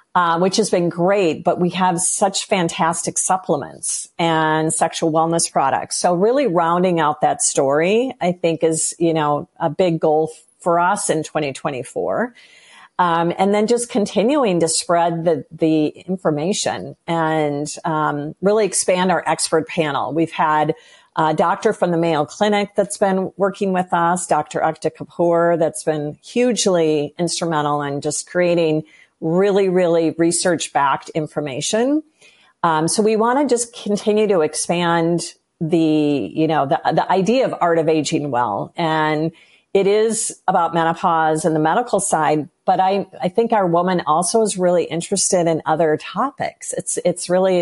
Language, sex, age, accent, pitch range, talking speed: English, female, 50-69, American, 160-190 Hz, 155 wpm